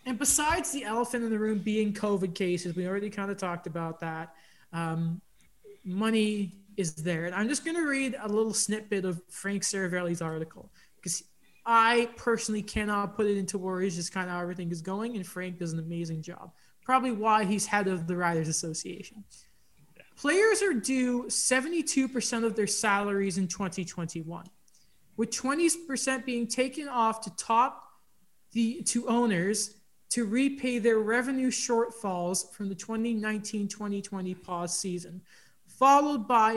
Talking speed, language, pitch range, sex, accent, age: 155 wpm, English, 185-235 Hz, male, American, 20-39